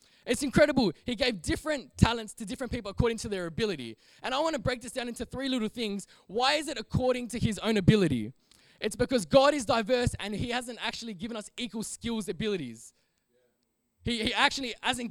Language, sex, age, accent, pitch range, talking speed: English, male, 20-39, Australian, 210-255 Hz, 200 wpm